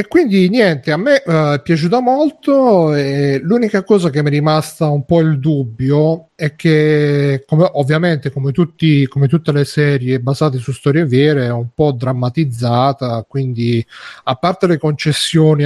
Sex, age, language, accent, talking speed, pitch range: male, 40-59, Italian, native, 165 wpm, 135-165 Hz